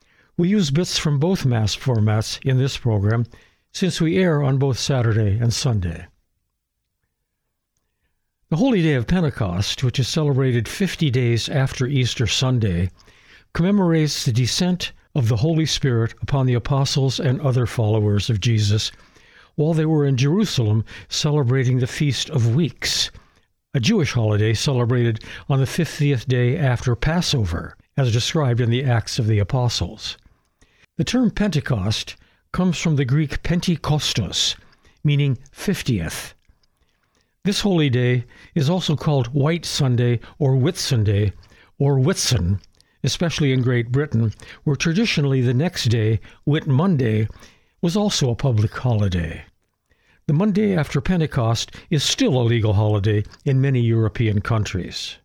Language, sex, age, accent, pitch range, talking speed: English, male, 60-79, American, 110-150 Hz, 135 wpm